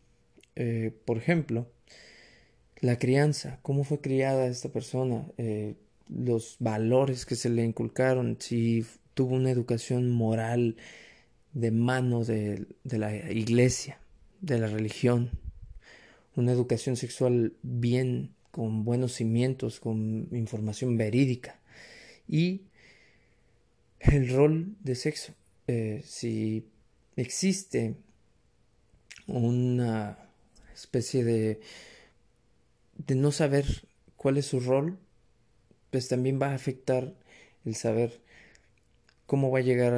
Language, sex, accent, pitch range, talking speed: Spanish, male, Mexican, 115-130 Hz, 105 wpm